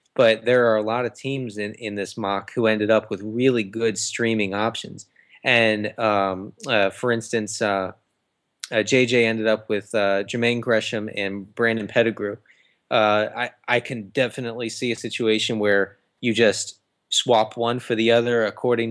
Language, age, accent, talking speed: English, 20-39, American, 170 wpm